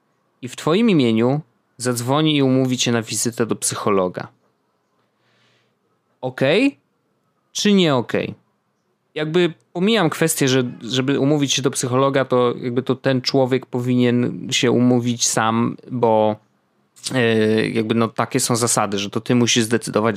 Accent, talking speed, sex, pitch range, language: native, 140 wpm, male, 110-140 Hz, Polish